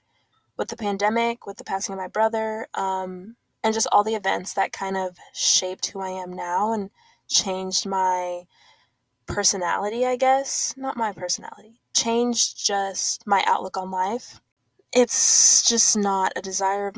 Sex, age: female, 20-39